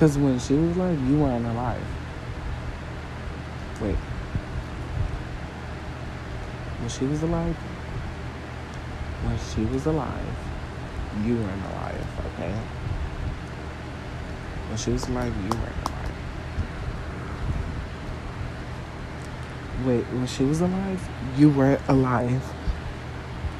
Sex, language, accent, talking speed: male, English, American, 90 wpm